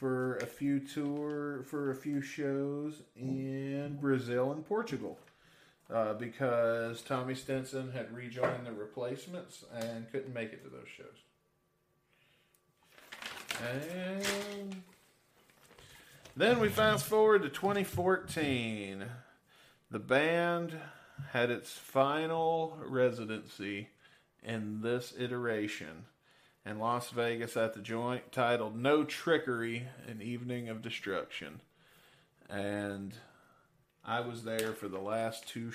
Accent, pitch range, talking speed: American, 115-145 Hz, 105 wpm